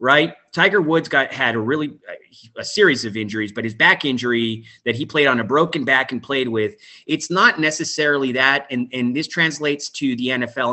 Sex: male